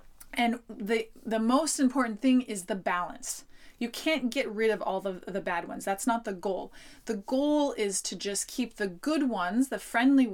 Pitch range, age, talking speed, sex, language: 200-260 Hz, 20-39, 195 wpm, female, English